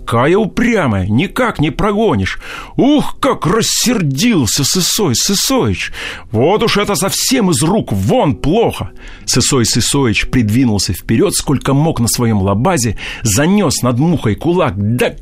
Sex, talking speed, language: male, 120 wpm, Russian